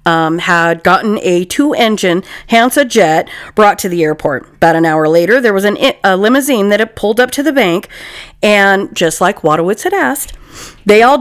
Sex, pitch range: female, 180-245 Hz